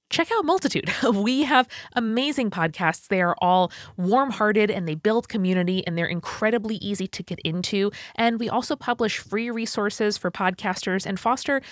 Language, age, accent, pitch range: English, 20-39, American, 170-245 Hz